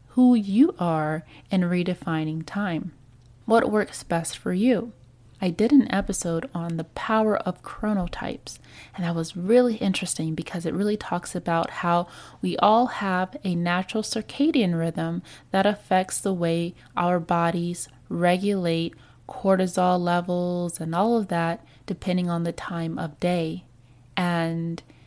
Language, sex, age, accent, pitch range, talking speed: English, female, 20-39, American, 165-205 Hz, 140 wpm